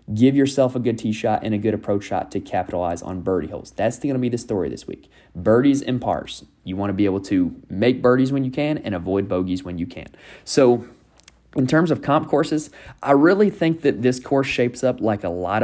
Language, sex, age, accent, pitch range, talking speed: English, male, 20-39, American, 100-130 Hz, 235 wpm